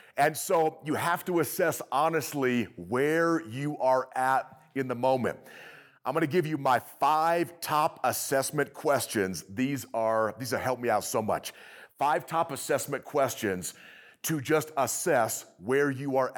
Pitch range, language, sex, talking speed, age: 120-155 Hz, English, male, 155 wpm, 40-59